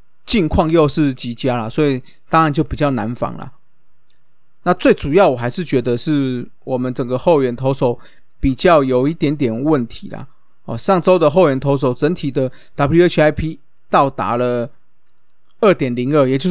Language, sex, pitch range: Chinese, male, 130-180 Hz